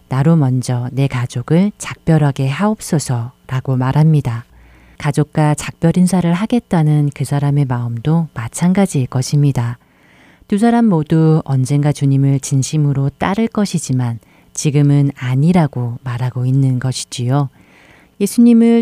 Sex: female